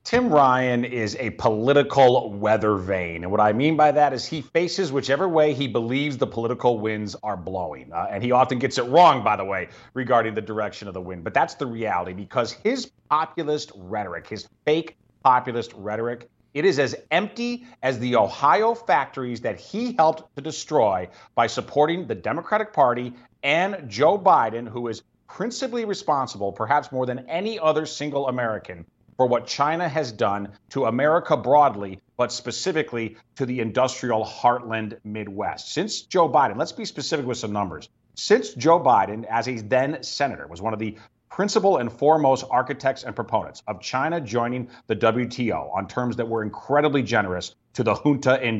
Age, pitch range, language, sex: 30-49, 110-150 Hz, English, male